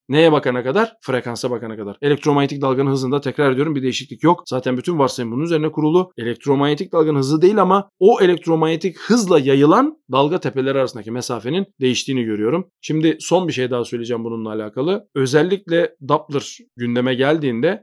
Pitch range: 125-165 Hz